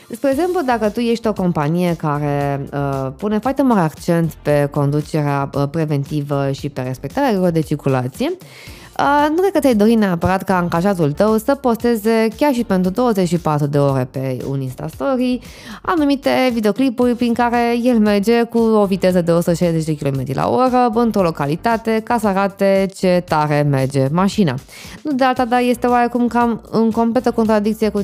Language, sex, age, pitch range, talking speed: Romanian, female, 20-39, 155-230 Hz, 165 wpm